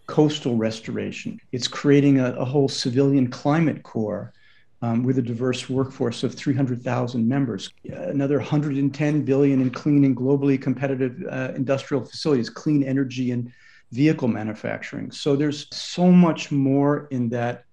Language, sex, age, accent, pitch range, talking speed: English, male, 50-69, American, 125-145 Hz, 140 wpm